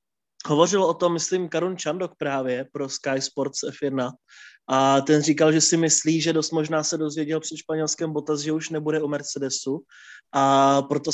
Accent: native